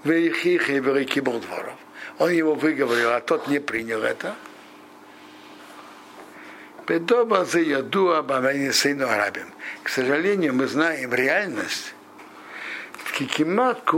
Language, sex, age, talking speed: Russian, male, 60-79, 75 wpm